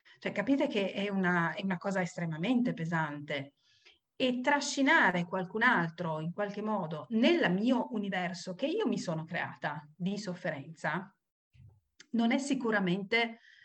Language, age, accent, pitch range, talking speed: Italian, 40-59, native, 170-240 Hz, 130 wpm